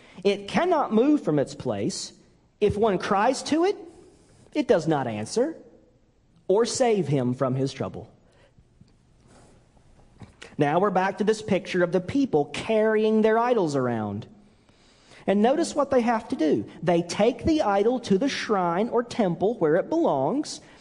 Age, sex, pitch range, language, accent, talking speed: 40-59, male, 150-235 Hz, English, American, 155 wpm